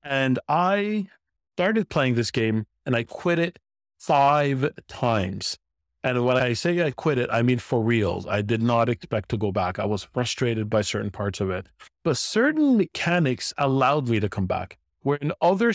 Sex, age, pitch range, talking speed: male, 30-49, 110-145 Hz, 185 wpm